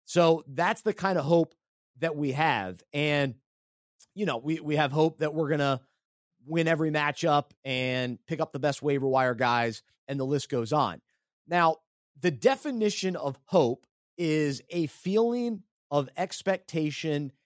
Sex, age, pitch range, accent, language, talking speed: male, 30-49, 135-175 Hz, American, English, 155 wpm